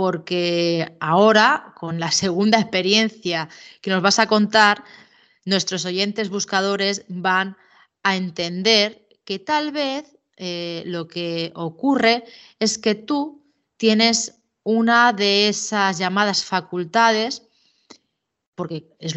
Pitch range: 180-230 Hz